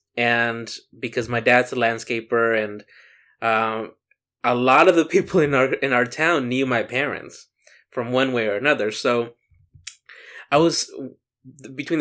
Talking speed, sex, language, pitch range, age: 150 wpm, male, English, 115-145 Hz, 20-39